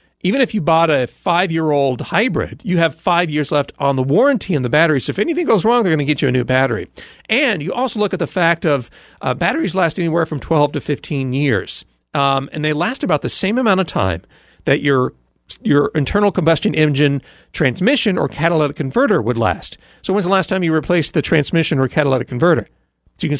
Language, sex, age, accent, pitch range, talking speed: English, male, 40-59, American, 130-175 Hz, 220 wpm